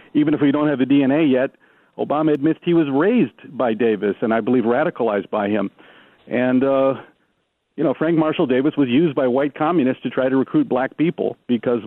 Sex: male